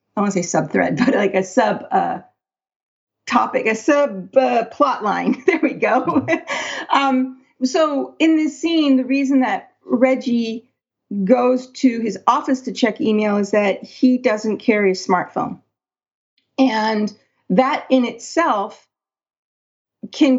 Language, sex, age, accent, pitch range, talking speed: English, female, 40-59, American, 210-265 Hz, 145 wpm